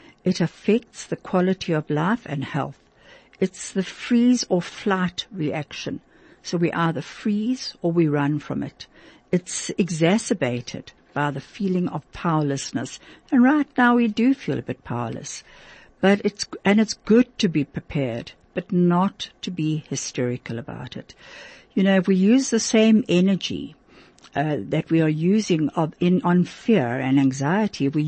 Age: 60-79